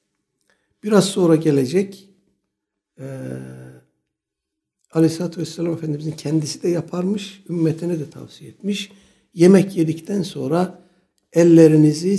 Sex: male